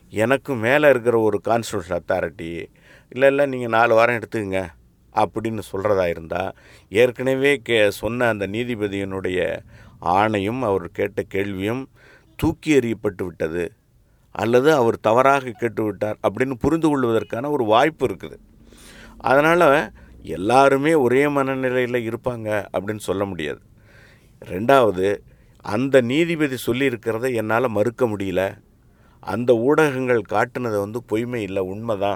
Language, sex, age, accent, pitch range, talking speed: English, male, 50-69, Indian, 105-135 Hz, 95 wpm